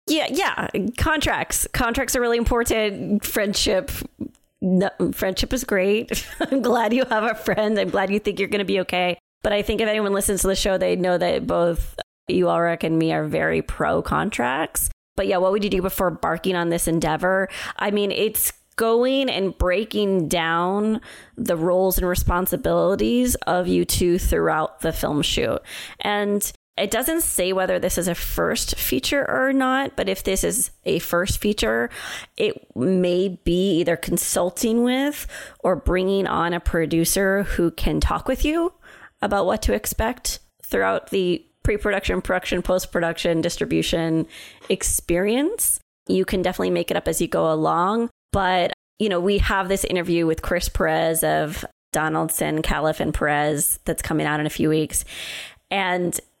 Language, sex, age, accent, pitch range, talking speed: English, female, 20-39, American, 170-215 Hz, 165 wpm